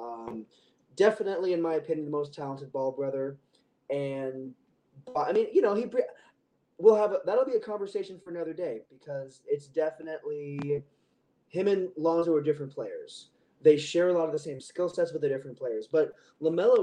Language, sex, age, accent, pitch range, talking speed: English, male, 20-39, American, 145-185 Hz, 180 wpm